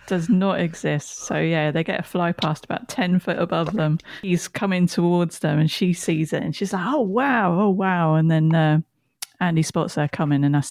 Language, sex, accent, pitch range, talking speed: English, female, British, 165-210 Hz, 220 wpm